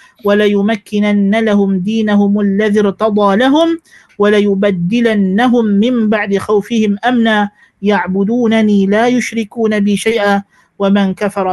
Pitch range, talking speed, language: 200-255 Hz, 110 wpm, Malay